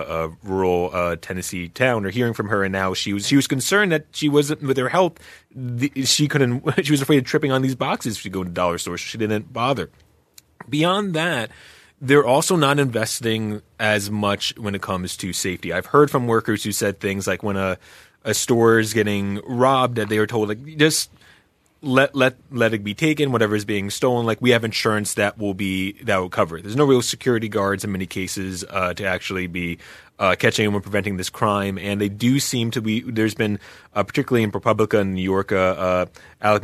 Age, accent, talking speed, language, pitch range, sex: 30-49, American, 215 wpm, English, 95-125 Hz, male